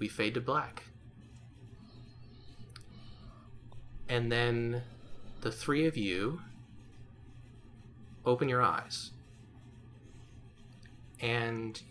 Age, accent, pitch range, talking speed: 30-49, American, 110-125 Hz, 65 wpm